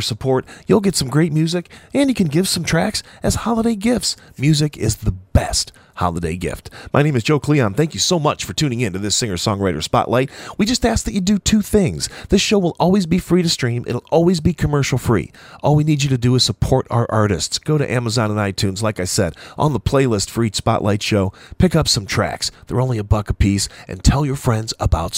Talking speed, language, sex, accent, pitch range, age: 235 wpm, English, male, American, 110-155 Hz, 40-59